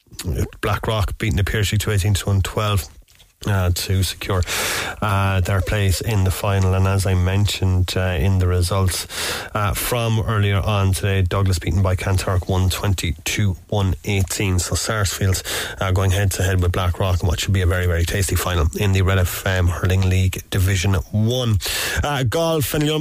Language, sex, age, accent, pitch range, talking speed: English, male, 30-49, Irish, 95-110 Hz, 175 wpm